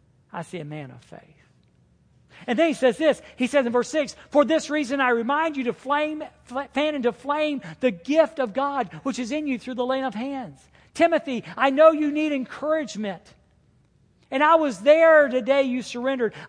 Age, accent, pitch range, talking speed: 50-69, American, 185-285 Hz, 205 wpm